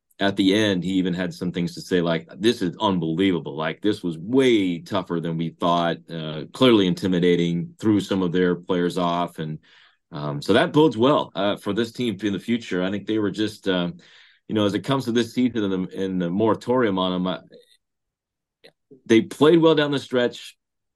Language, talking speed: English, 200 wpm